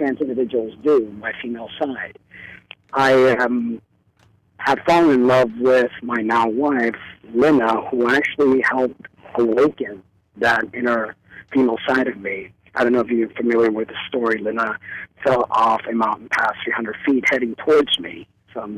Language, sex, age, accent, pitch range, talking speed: English, male, 40-59, American, 110-130 Hz, 150 wpm